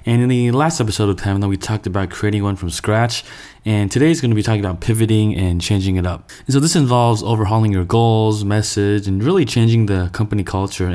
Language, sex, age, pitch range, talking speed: English, male, 20-39, 95-110 Hz, 225 wpm